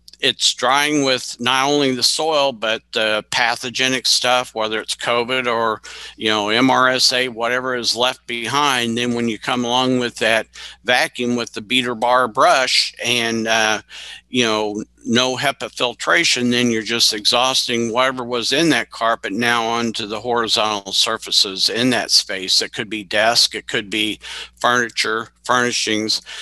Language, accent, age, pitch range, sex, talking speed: English, American, 50-69, 110-130 Hz, male, 155 wpm